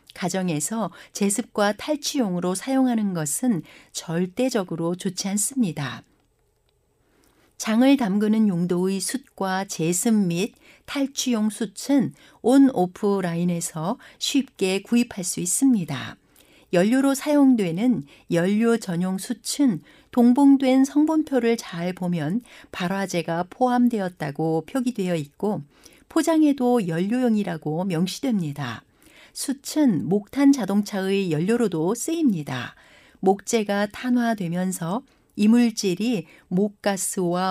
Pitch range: 180-245 Hz